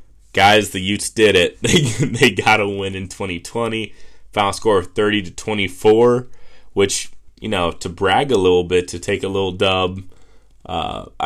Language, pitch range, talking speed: English, 95-115 Hz, 165 wpm